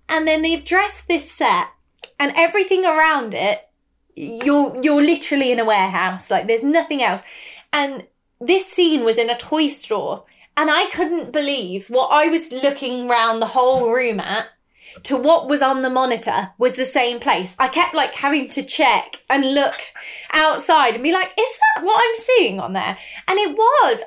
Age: 20-39